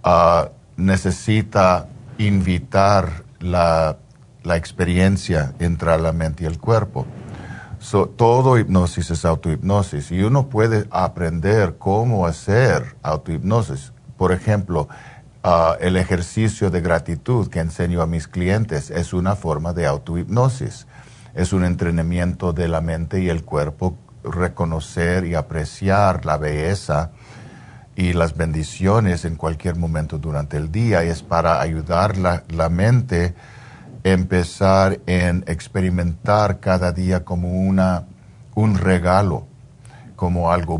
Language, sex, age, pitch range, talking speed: Spanish, male, 50-69, 85-105 Hz, 120 wpm